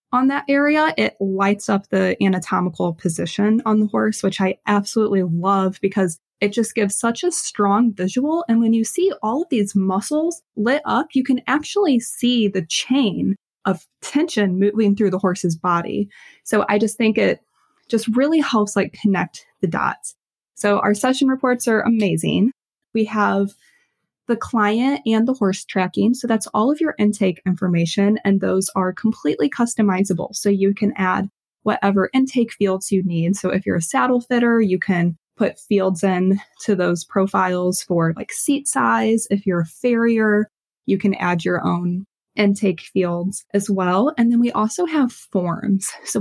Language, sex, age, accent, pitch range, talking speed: English, female, 20-39, American, 190-240 Hz, 170 wpm